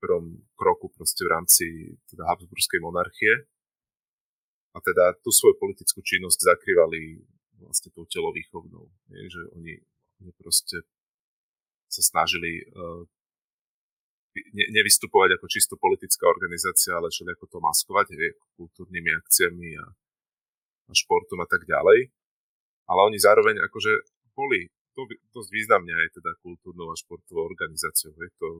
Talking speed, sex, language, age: 120 wpm, male, Slovak, 30-49